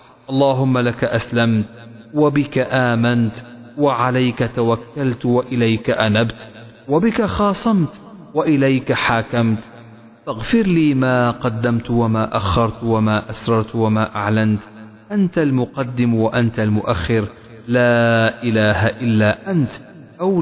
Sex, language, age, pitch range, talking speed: male, Arabic, 40-59, 110-140 Hz, 95 wpm